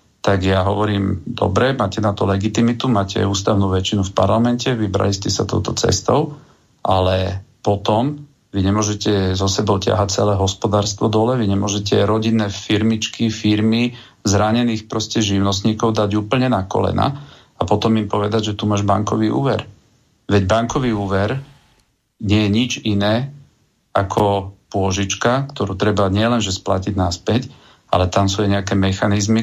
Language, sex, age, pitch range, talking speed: Slovak, male, 40-59, 100-115 Hz, 145 wpm